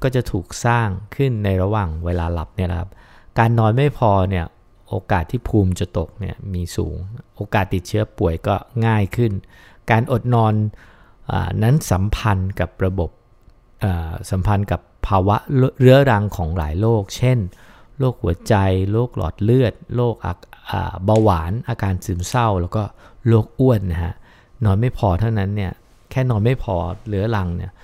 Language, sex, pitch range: English, male, 90-115 Hz